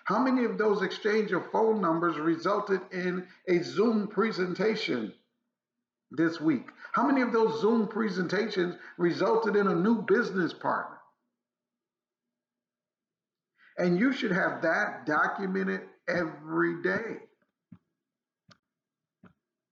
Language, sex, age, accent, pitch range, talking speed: English, male, 50-69, American, 150-215 Hz, 105 wpm